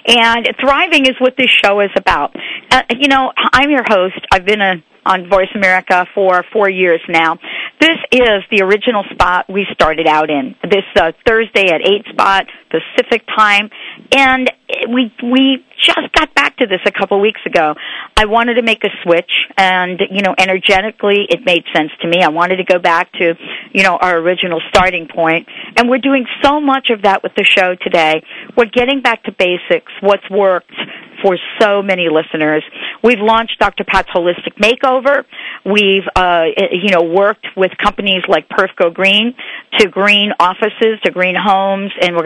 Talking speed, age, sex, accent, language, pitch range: 180 wpm, 50-69, female, American, English, 180-230 Hz